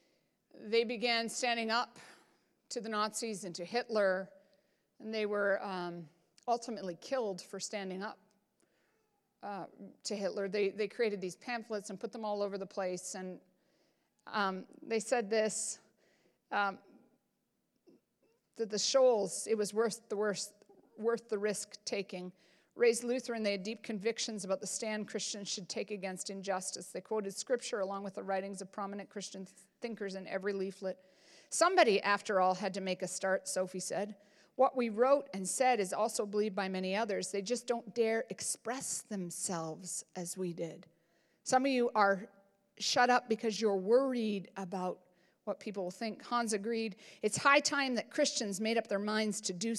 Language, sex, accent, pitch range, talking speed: English, female, American, 190-230 Hz, 165 wpm